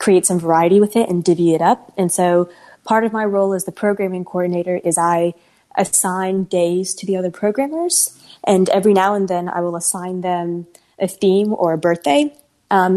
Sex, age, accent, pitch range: female, 20-39, American, 170-195 Hz